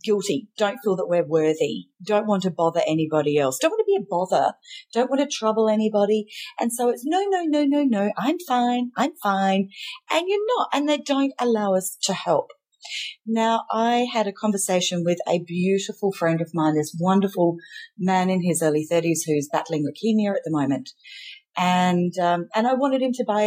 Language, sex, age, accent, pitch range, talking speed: English, female, 40-59, Australian, 170-240 Hz, 195 wpm